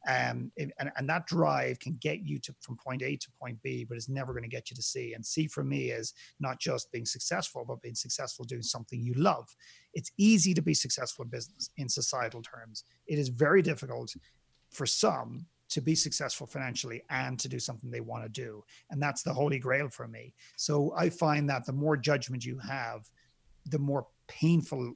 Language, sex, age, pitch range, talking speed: English, male, 40-59, 125-150 Hz, 210 wpm